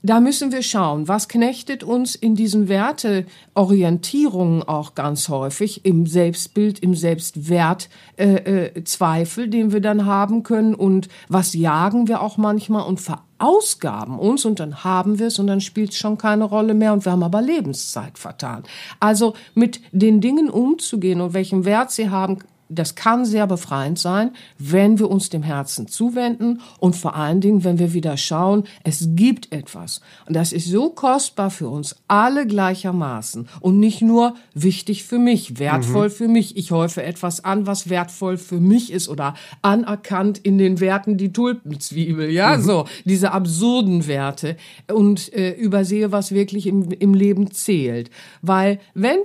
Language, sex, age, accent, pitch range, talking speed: German, female, 50-69, German, 175-215 Hz, 165 wpm